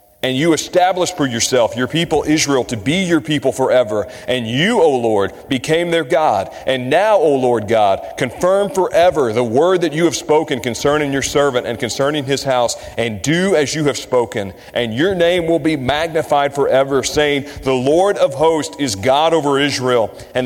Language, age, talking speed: English, 40-59, 185 wpm